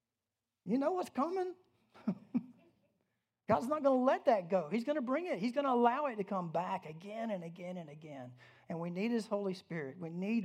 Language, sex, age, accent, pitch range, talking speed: English, male, 50-69, American, 140-185 Hz, 215 wpm